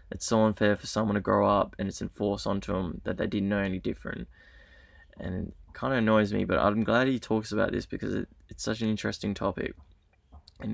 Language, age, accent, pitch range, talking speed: English, 20-39, Australian, 105-115 Hz, 220 wpm